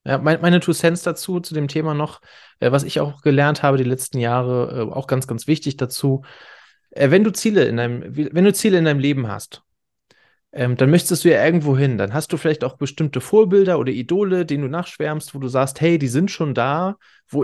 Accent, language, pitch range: German, German, 130-160 Hz